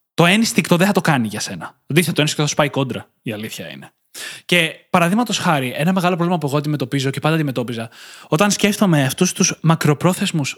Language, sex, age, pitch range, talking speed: Greek, male, 20-39, 145-200 Hz, 200 wpm